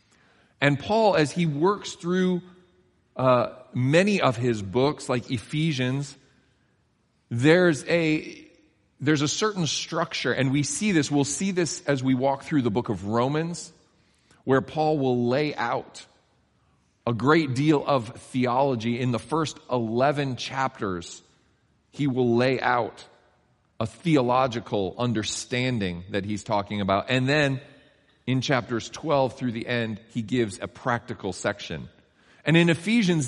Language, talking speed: English, 135 wpm